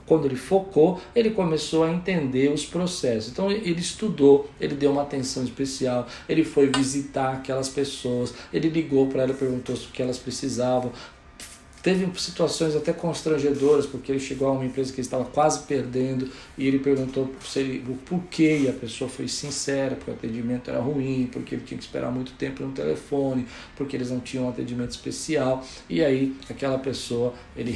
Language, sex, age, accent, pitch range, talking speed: Portuguese, male, 50-69, Brazilian, 125-160 Hz, 175 wpm